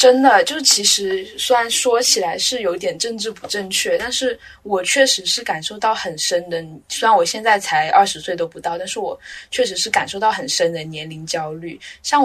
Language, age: Chinese, 10-29